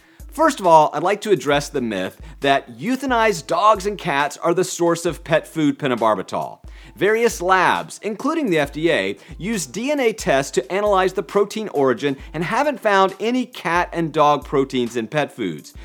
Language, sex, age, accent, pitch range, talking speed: English, male, 40-59, American, 145-230 Hz, 170 wpm